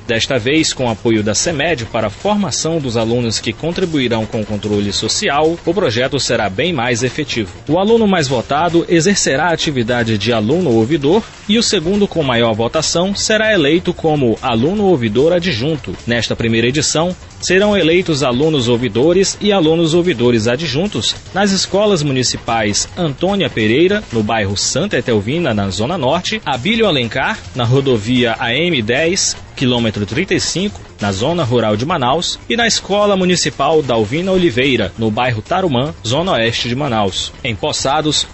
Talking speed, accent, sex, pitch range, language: 150 wpm, Brazilian, male, 115-175 Hz, Portuguese